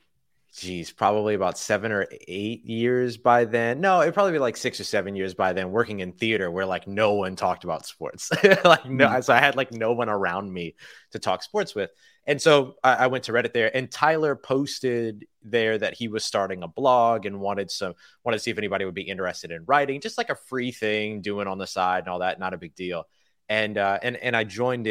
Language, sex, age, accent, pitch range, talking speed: English, male, 30-49, American, 95-120 Hz, 235 wpm